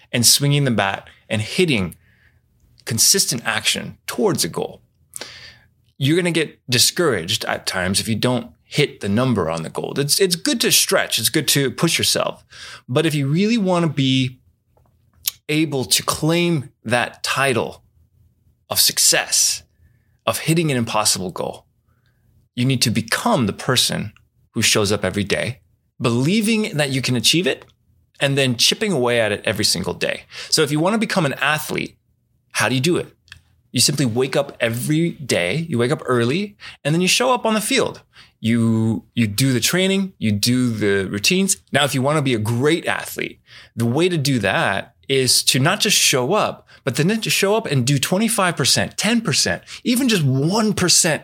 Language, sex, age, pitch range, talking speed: English, male, 20-39, 115-165 Hz, 175 wpm